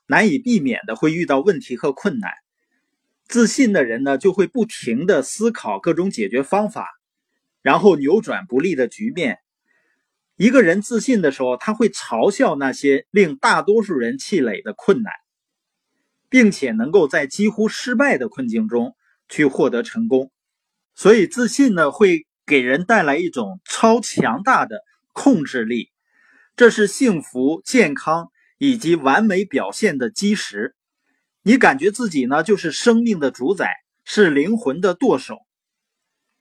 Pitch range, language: 180-245 Hz, Chinese